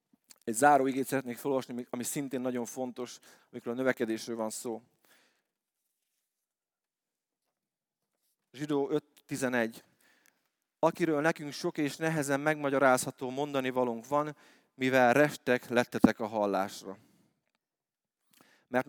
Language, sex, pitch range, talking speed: Hungarian, male, 125-150 Hz, 95 wpm